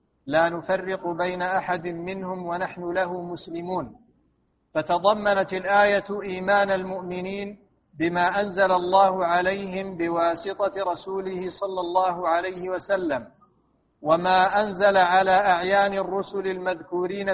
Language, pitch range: Arabic, 175-195 Hz